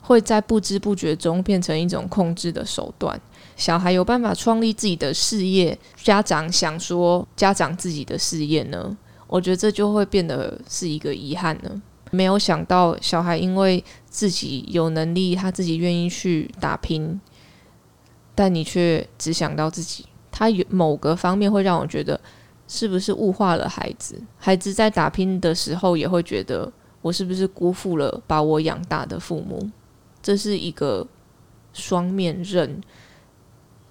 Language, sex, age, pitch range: Chinese, female, 20-39, 160-190 Hz